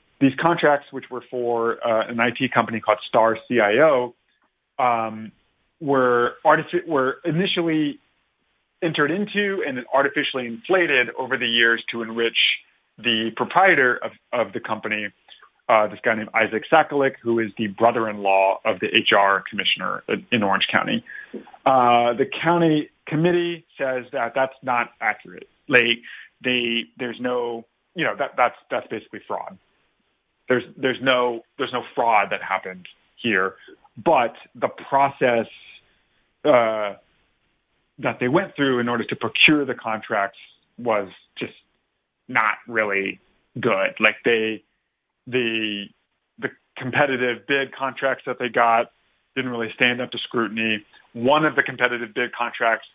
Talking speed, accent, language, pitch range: 140 wpm, American, English, 110-135 Hz